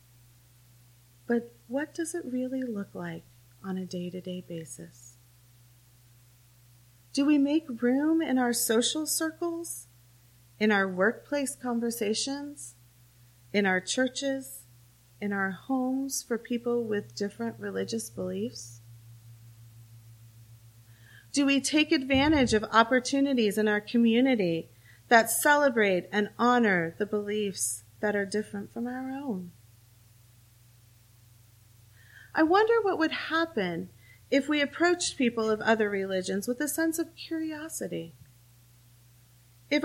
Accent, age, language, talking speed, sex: American, 30-49, English, 110 wpm, female